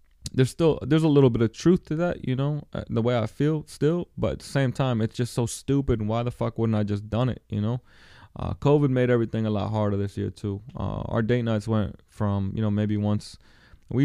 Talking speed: 245 wpm